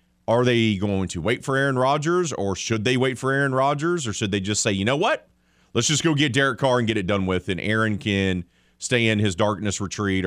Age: 30-49